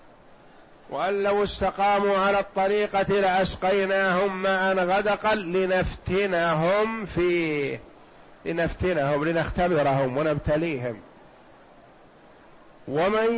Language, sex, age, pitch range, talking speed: Arabic, male, 50-69, 150-185 Hz, 65 wpm